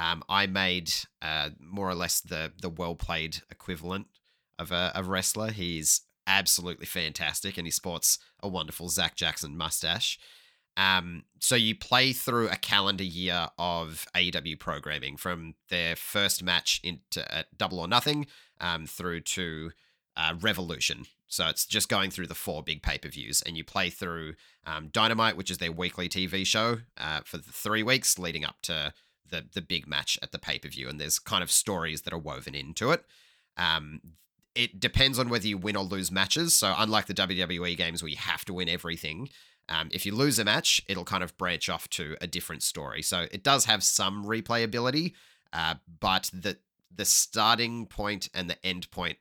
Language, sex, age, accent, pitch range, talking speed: English, male, 30-49, Australian, 85-105 Hz, 185 wpm